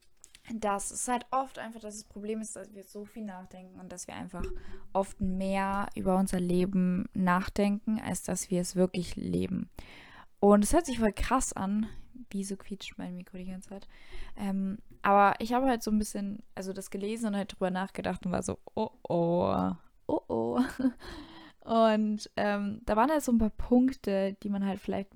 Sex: female